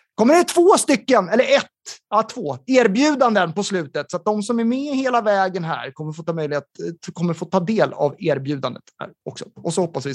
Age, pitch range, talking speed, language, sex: 30-49, 180-235 Hz, 215 wpm, Swedish, male